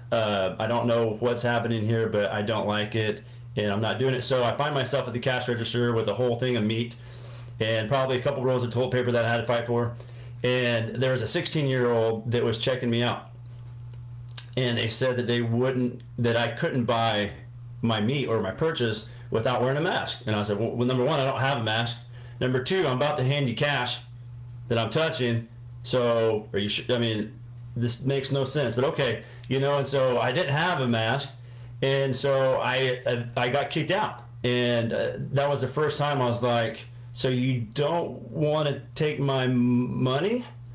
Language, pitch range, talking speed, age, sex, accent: English, 115-130 Hz, 215 wpm, 30-49, male, American